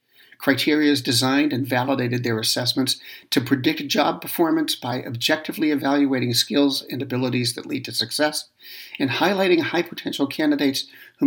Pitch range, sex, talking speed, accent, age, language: 125-155 Hz, male, 145 wpm, American, 60-79, English